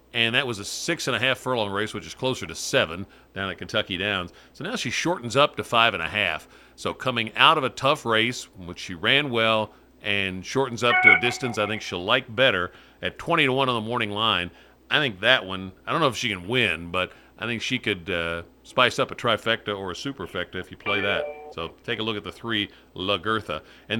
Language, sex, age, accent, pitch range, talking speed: English, male, 50-69, American, 95-120 Hz, 220 wpm